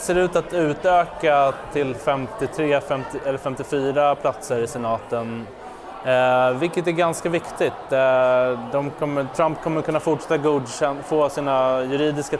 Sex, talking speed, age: male, 140 wpm, 20-39